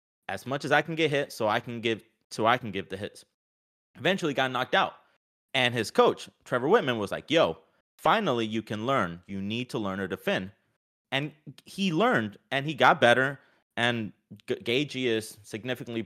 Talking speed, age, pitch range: 185 wpm, 30-49, 105-150 Hz